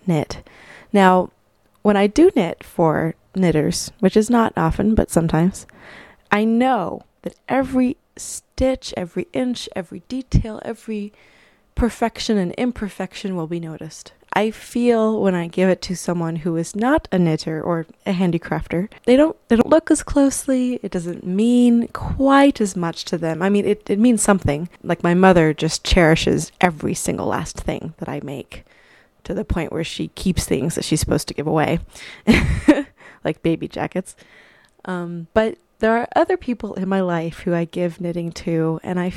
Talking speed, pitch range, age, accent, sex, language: 170 wpm, 170-230 Hz, 20-39, American, female, English